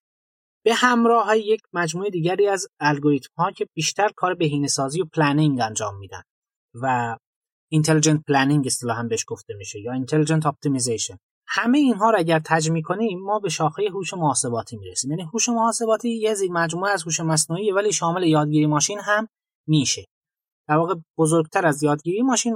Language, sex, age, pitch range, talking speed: Persian, male, 30-49, 145-200 Hz, 170 wpm